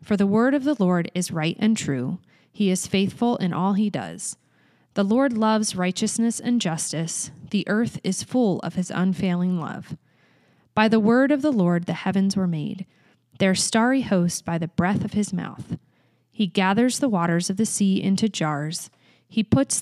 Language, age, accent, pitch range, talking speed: English, 30-49, American, 175-215 Hz, 185 wpm